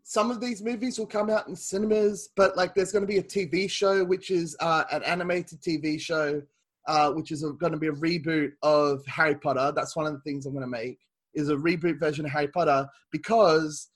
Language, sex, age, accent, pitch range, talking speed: English, male, 20-39, Australian, 155-190 Hz, 230 wpm